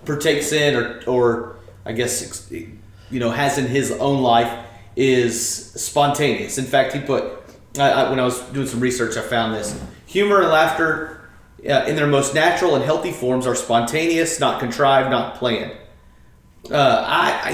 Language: English